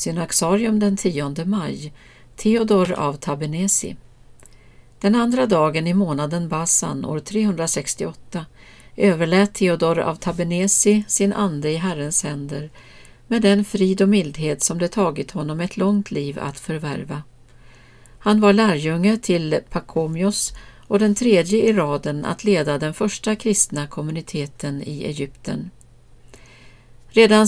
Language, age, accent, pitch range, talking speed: Swedish, 50-69, native, 145-200 Hz, 125 wpm